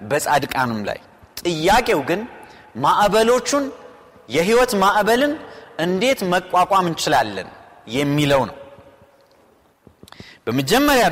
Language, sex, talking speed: Amharic, male, 70 wpm